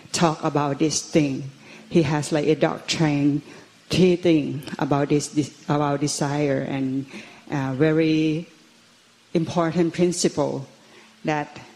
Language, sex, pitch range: Thai, female, 145-165 Hz